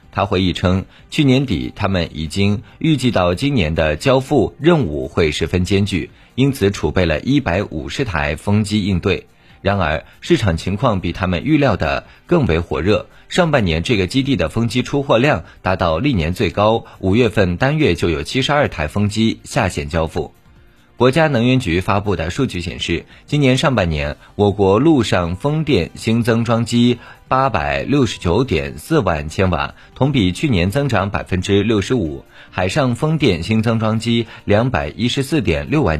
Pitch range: 90-130 Hz